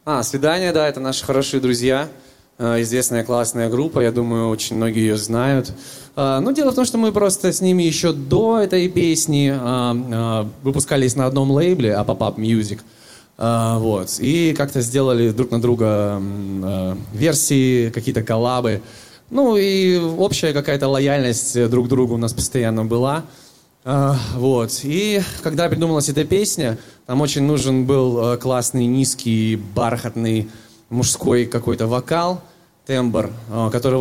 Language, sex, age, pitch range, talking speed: Russian, male, 20-39, 115-150 Hz, 135 wpm